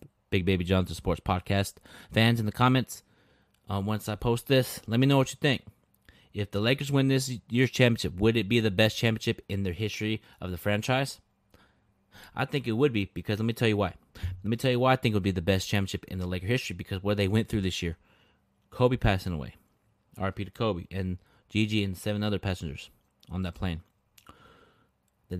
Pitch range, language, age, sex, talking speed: 95-110 Hz, English, 30-49, male, 215 wpm